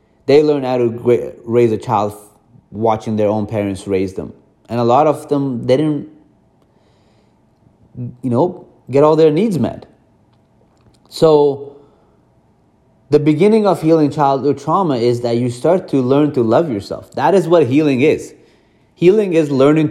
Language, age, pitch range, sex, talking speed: English, 30-49, 115-150 Hz, male, 155 wpm